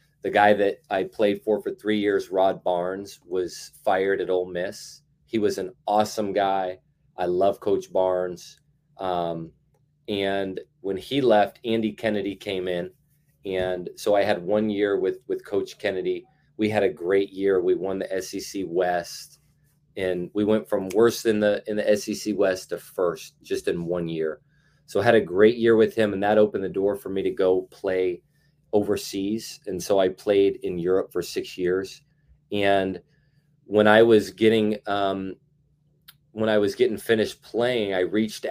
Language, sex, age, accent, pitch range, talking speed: English, male, 30-49, American, 95-145 Hz, 175 wpm